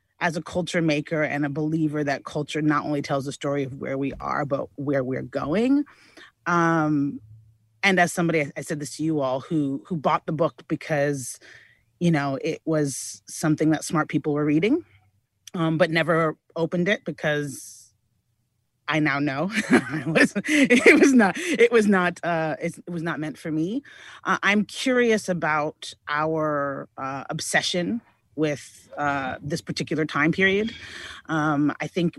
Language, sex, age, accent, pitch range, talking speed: English, female, 30-49, American, 145-175 Hz, 165 wpm